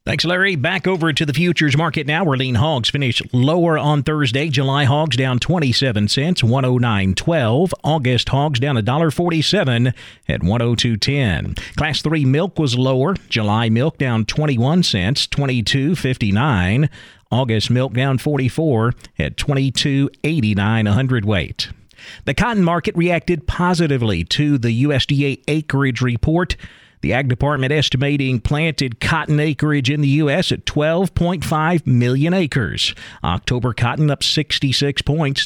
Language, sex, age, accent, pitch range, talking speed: English, male, 40-59, American, 125-155 Hz, 130 wpm